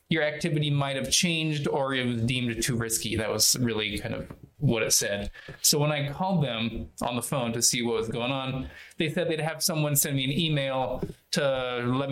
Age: 20-39